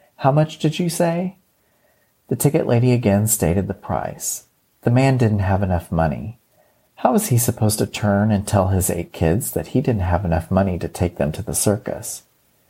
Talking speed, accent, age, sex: 195 wpm, American, 40-59, male